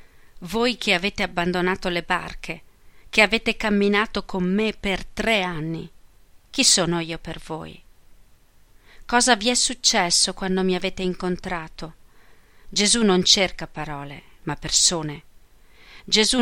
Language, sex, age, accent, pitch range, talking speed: Italian, female, 40-59, native, 170-205 Hz, 125 wpm